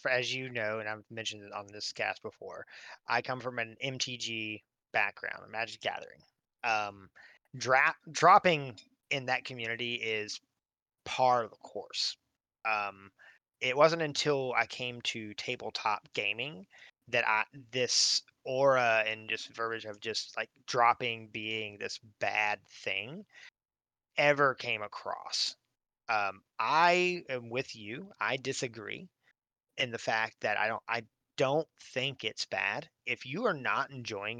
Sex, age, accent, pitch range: male, 20-39, American, 110-135 Hz